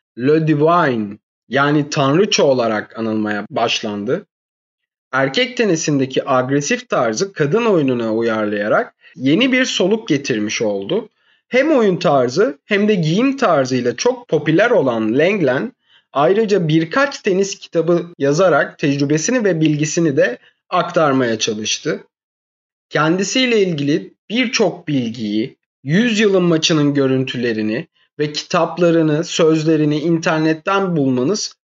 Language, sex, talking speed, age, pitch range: Turkish, male, 100 wpm, 30-49, 135-195 Hz